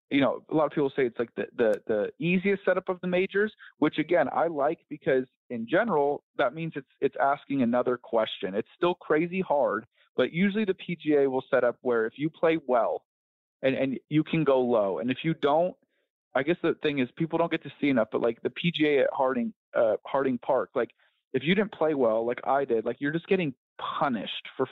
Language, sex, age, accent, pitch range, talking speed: English, male, 30-49, American, 130-175 Hz, 225 wpm